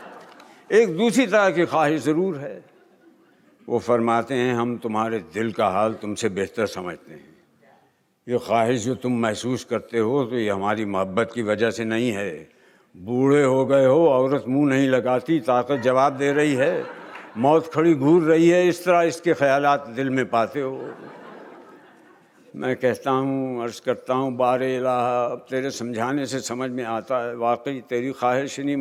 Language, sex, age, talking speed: Hindi, male, 60-79, 165 wpm